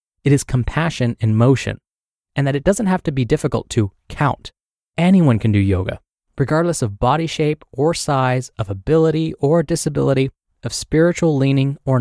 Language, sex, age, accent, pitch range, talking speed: English, male, 20-39, American, 115-160 Hz, 165 wpm